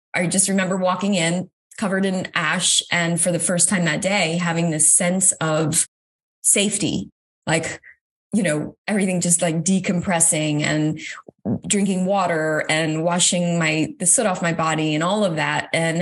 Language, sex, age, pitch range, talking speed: English, female, 20-39, 165-190 Hz, 160 wpm